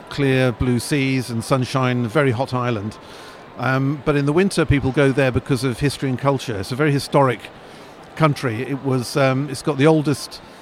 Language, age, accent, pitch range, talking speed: English, 50-69, British, 120-145 Hz, 185 wpm